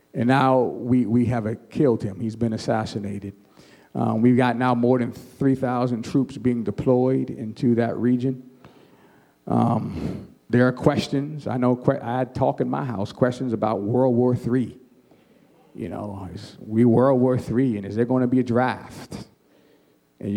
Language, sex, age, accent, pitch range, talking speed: English, male, 50-69, American, 110-130 Hz, 170 wpm